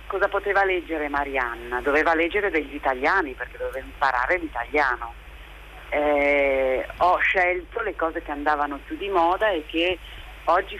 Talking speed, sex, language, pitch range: 140 wpm, female, Italian, 130-170 Hz